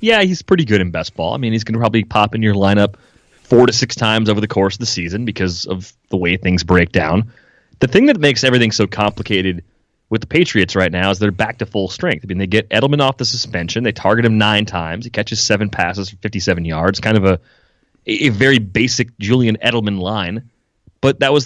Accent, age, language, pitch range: American, 30-49, English, 100-125 Hz